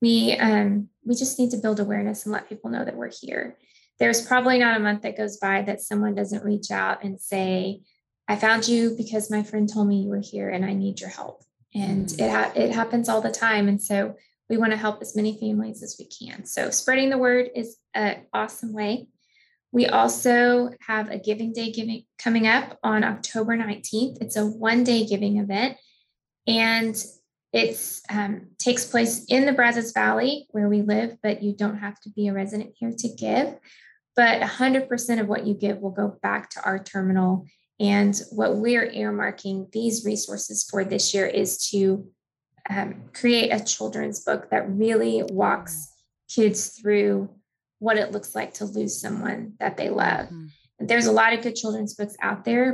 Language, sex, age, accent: English, female, 20-39, American